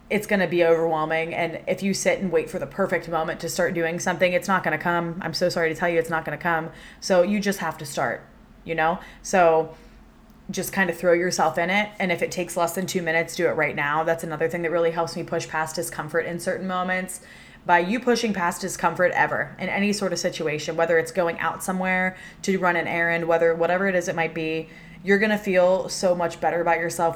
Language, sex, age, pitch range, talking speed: English, female, 20-39, 165-195 Hz, 245 wpm